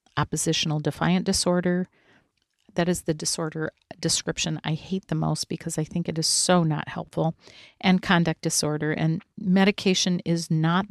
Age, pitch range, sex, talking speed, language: 40-59, 155-180 Hz, female, 150 wpm, English